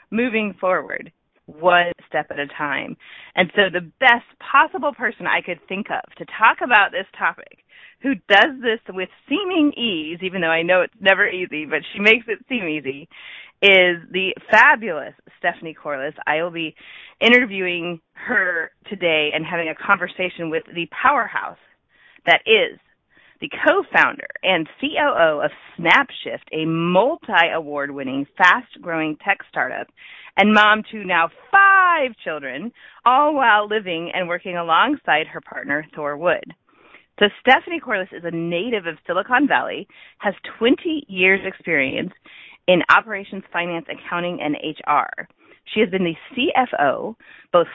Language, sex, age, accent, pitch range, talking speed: English, female, 30-49, American, 165-235 Hz, 145 wpm